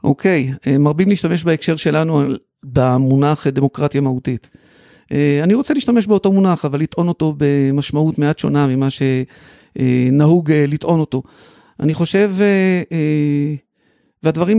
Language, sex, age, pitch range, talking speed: Hebrew, male, 50-69, 140-175 Hz, 105 wpm